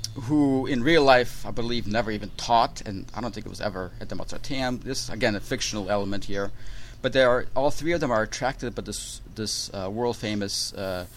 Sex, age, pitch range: male, 40-59, 105-125 Hz